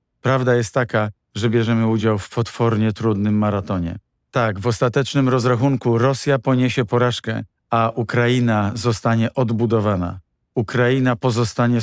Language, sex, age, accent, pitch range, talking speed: Polish, male, 50-69, native, 105-125 Hz, 115 wpm